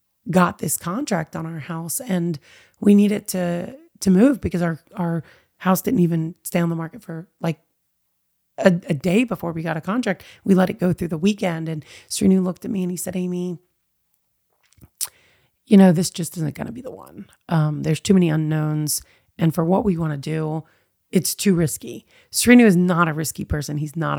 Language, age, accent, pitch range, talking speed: English, 30-49, American, 160-190 Hz, 205 wpm